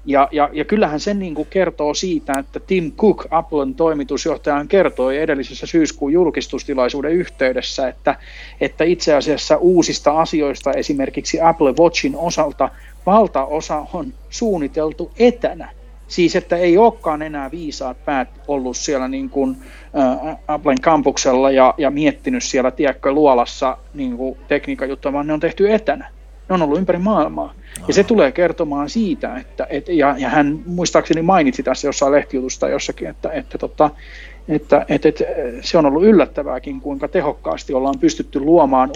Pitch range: 135-170 Hz